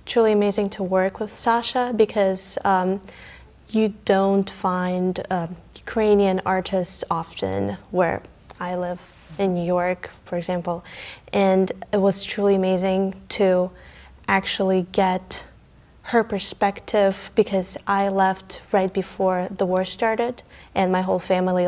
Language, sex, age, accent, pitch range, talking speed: English, female, 20-39, American, 185-210 Hz, 125 wpm